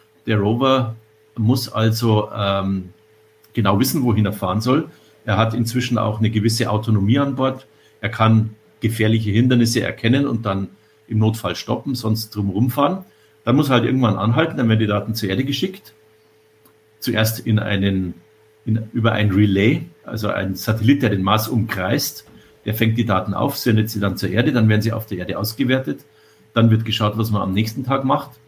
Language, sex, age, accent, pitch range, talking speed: German, male, 50-69, German, 105-120 Hz, 175 wpm